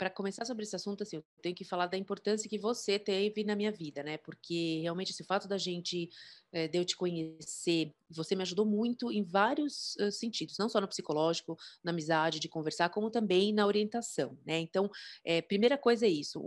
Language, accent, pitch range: Portuguese, Brazilian, 170-215 Hz